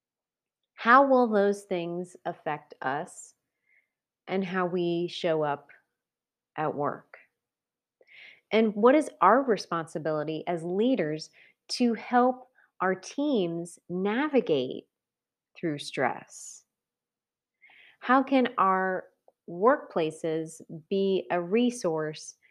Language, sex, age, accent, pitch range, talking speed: English, female, 30-49, American, 170-235 Hz, 90 wpm